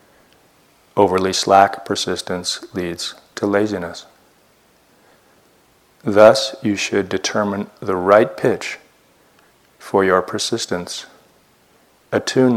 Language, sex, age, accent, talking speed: English, male, 40-59, American, 80 wpm